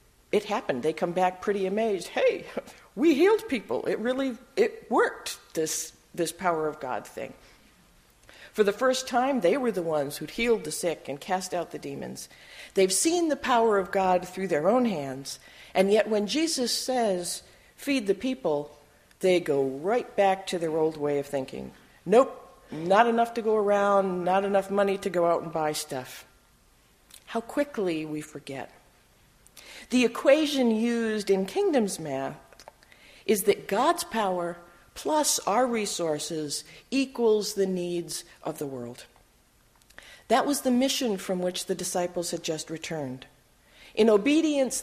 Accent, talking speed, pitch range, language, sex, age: American, 155 wpm, 165-240 Hz, English, female, 50-69